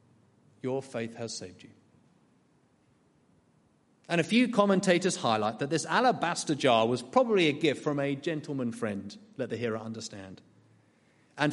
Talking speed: 140 wpm